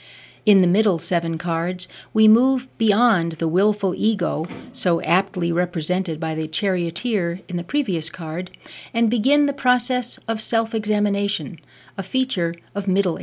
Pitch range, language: 170-220 Hz, English